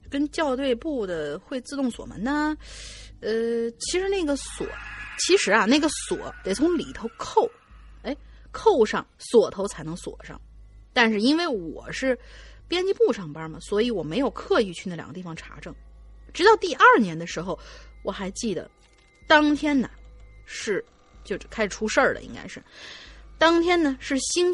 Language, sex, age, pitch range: Chinese, female, 30-49, 200-325 Hz